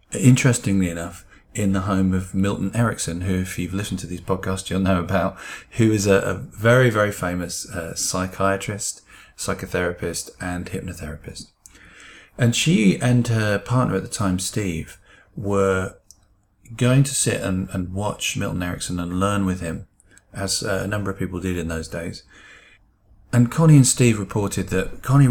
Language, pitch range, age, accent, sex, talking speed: English, 90-110 Hz, 30-49, British, male, 160 wpm